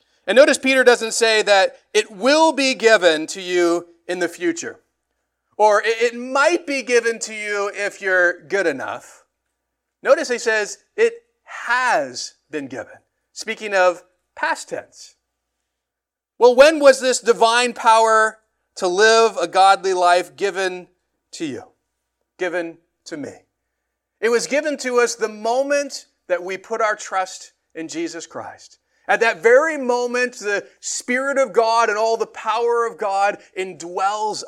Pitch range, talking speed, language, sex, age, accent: 170-240 Hz, 145 wpm, English, male, 40-59, American